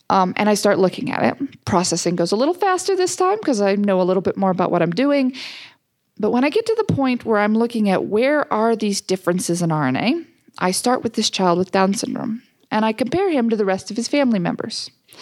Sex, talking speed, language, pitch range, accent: female, 240 wpm, English, 195-280 Hz, American